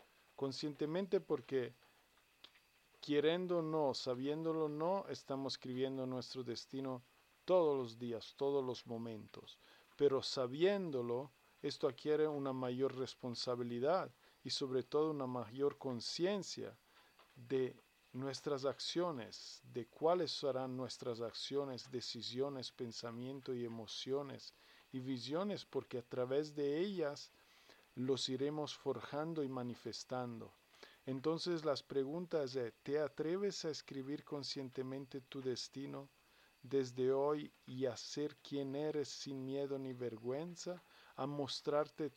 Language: Spanish